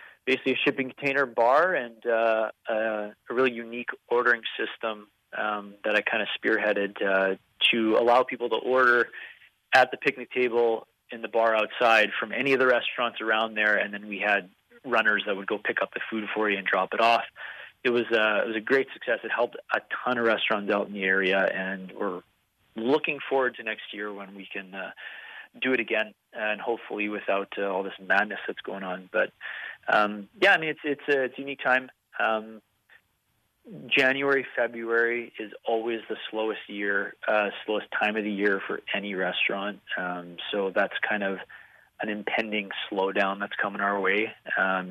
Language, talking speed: English, 185 wpm